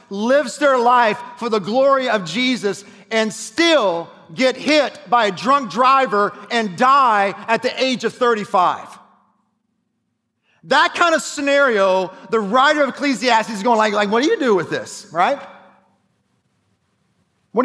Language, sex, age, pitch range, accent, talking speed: English, male, 40-59, 195-255 Hz, American, 145 wpm